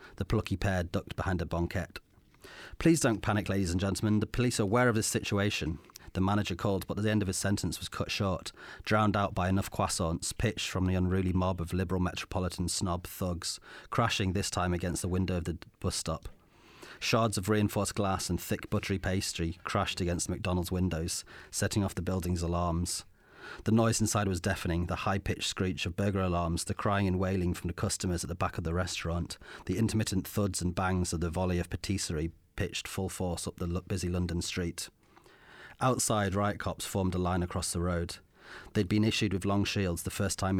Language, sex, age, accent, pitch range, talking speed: English, male, 30-49, British, 90-100 Hz, 200 wpm